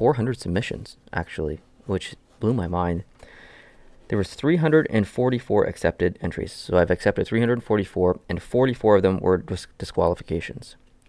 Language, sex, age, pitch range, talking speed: English, male, 20-39, 90-115 Hz, 125 wpm